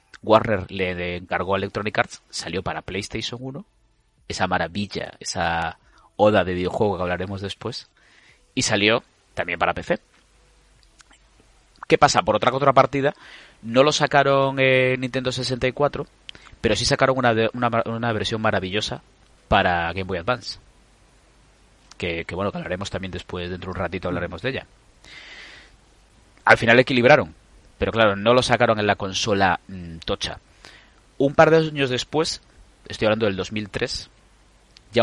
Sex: male